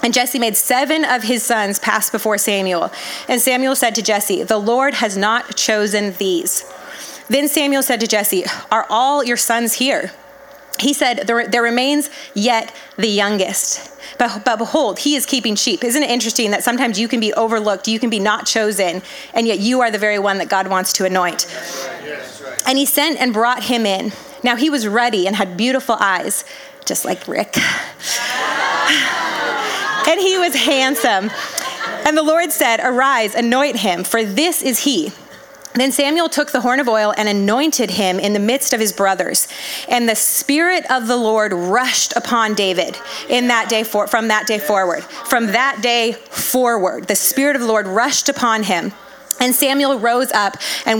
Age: 30-49